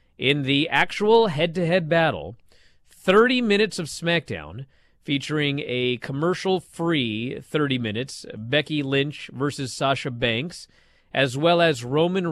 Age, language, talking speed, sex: 40-59, English, 125 wpm, male